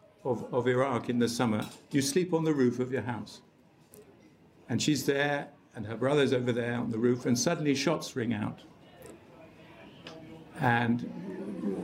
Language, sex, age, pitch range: English, male, 50-69, 125-165 Hz